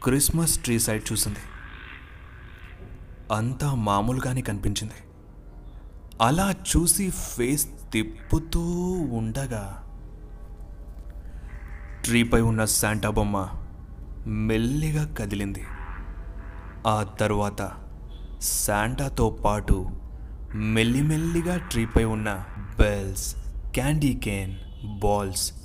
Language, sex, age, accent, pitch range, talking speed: Telugu, male, 30-49, native, 90-125 Hz, 70 wpm